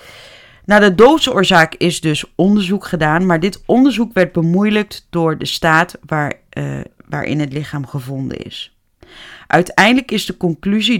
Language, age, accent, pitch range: Dutch, 30-49, Dutch, 150-185 Hz